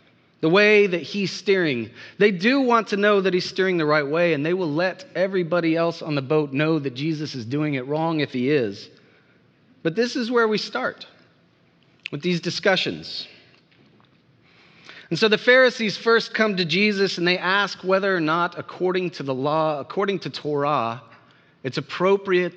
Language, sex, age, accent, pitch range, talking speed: English, male, 30-49, American, 150-190 Hz, 180 wpm